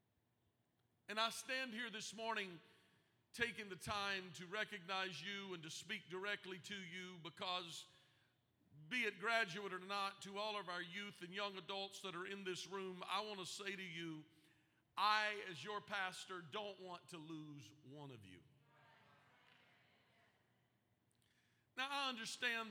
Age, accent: 50-69, American